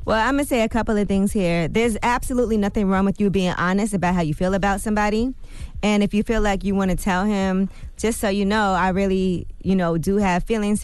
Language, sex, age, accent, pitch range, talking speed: English, female, 20-39, American, 180-210 Hz, 250 wpm